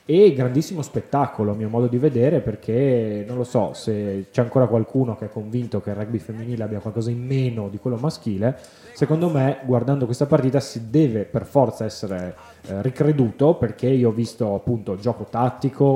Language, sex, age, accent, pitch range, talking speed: Italian, male, 10-29, native, 110-135 Hz, 185 wpm